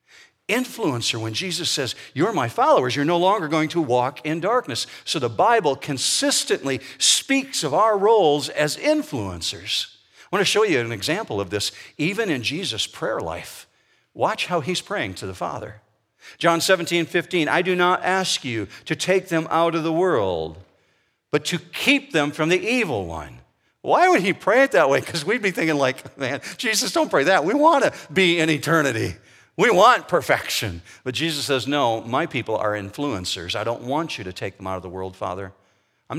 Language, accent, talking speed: English, American, 190 wpm